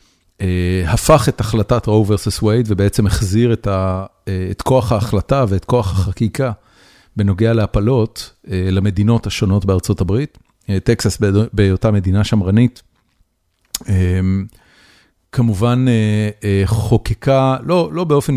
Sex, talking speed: male, 125 wpm